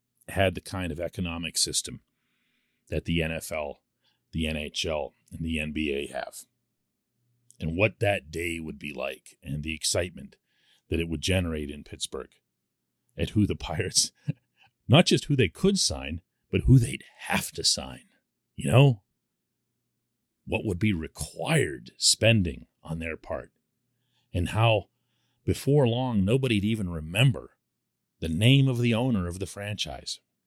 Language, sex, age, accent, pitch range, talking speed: English, male, 40-59, American, 85-120 Hz, 145 wpm